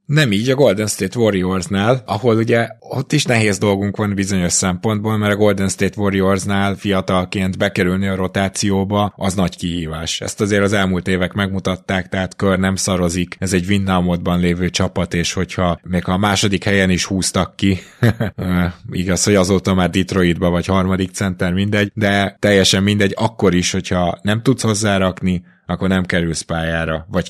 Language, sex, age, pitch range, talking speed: Hungarian, male, 20-39, 90-105 Hz, 165 wpm